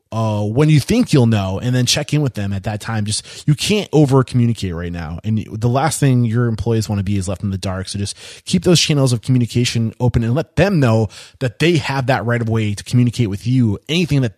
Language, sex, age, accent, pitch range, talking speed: English, male, 20-39, American, 110-130 Hz, 255 wpm